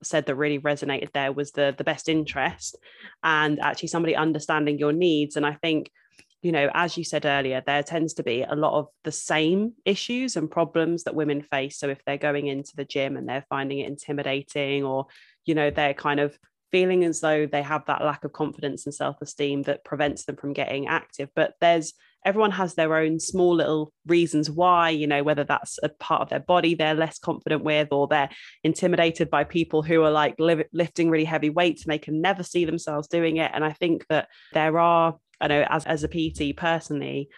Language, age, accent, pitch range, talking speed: English, 20-39, British, 145-165 Hz, 210 wpm